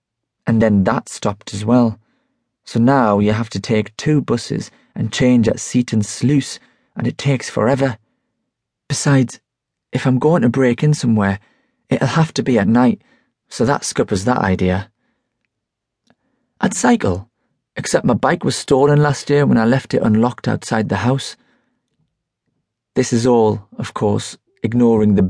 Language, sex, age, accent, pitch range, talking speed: English, male, 30-49, British, 110-145 Hz, 155 wpm